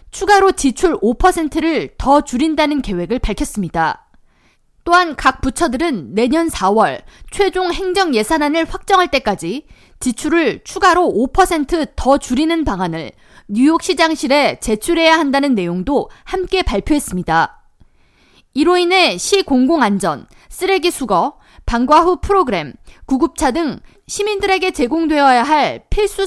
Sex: female